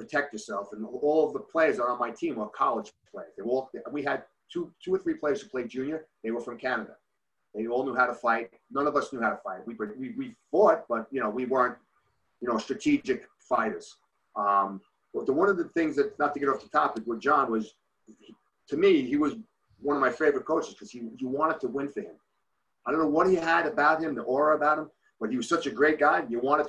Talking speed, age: 245 wpm, 40-59